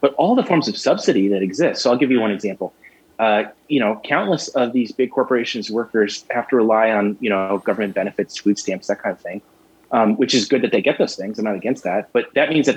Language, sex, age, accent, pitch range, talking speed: English, male, 30-49, American, 105-140 Hz, 255 wpm